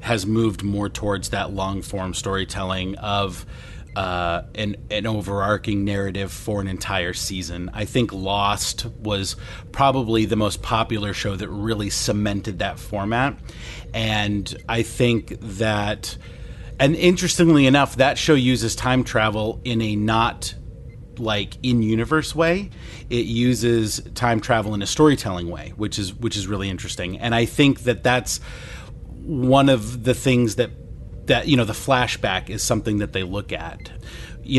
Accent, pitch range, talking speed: American, 100-125 Hz, 150 wpm